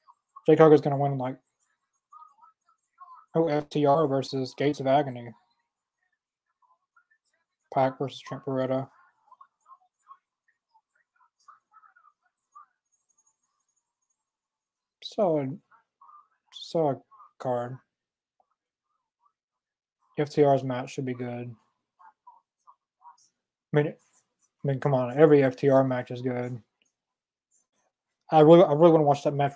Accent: American